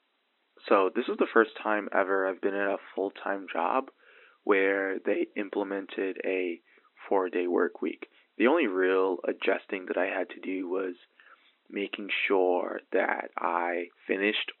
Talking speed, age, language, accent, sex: 145 wpm, 20-39, English, American, male